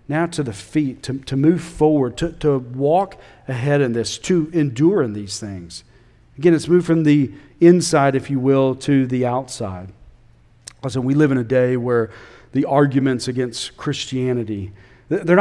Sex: male